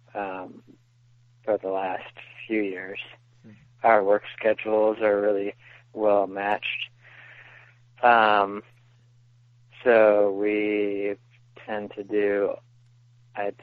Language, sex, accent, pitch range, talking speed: English, male, American, 100-120 Hz, 90 wpm